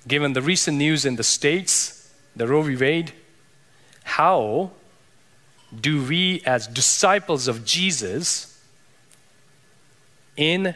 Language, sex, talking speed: English, male, 110 wpm